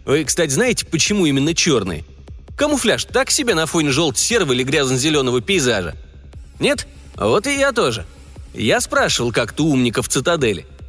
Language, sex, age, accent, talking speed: Russian, male, 30-49, native, 145 wpm